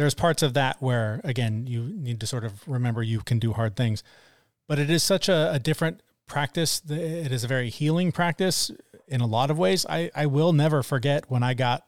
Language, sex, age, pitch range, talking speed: English, male, 30-49, 120-145 Hz, 220 wpm